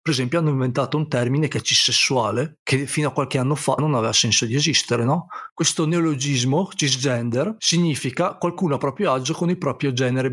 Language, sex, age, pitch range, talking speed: Italian, male, 40-59, 125-155 Hz, 190 wpm